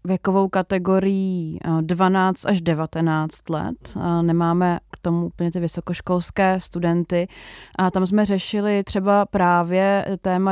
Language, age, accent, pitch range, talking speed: Czech, 30-49, native, 170-190 Hz, 115 wpm